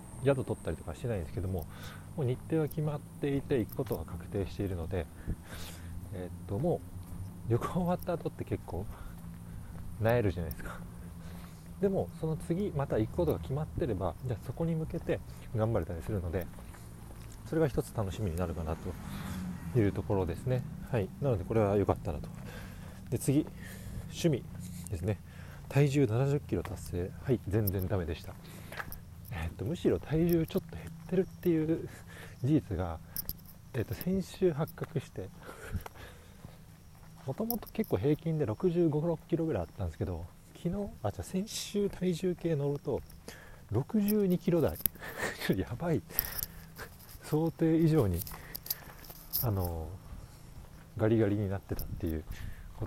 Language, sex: Japanese, male